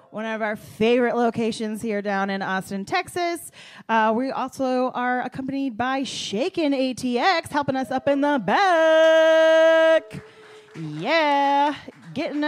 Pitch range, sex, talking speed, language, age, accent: 190-285 Hz, female, 125 wpm, English, 30-49, American